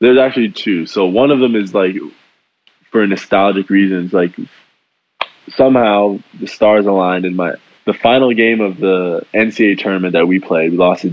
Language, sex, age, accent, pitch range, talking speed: English, male, 20-39, American, 90-105 Hz, 175 wpm